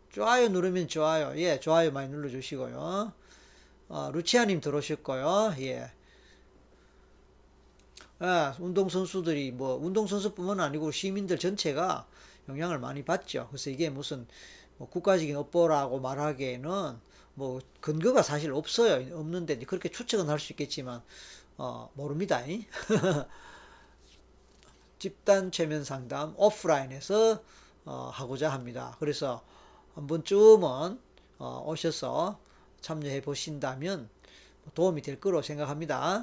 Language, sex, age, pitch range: Korean, male, 40-59, 135-180 Hz